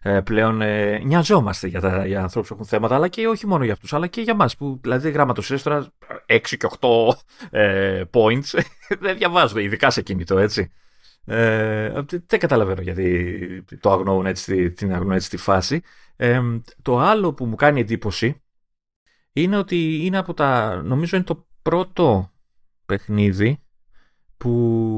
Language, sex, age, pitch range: Greek, male, 30-49, 95-140 Hz